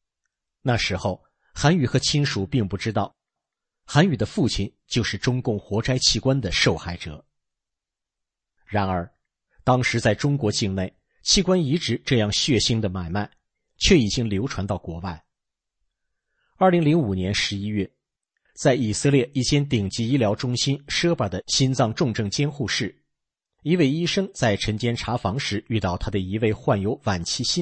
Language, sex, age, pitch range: English, male, 50-69, 95-135 Hz